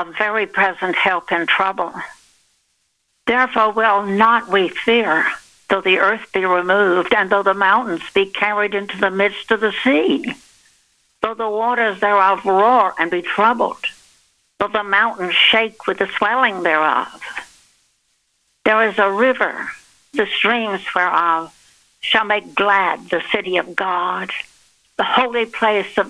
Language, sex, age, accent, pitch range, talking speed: English, female, 60-79, American, 190-225 Hz, 140 wpm